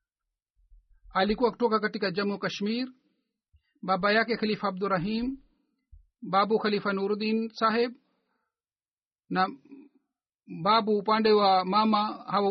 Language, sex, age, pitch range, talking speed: Swahili, male, 50-69, 190-225 Hz, 90 wpm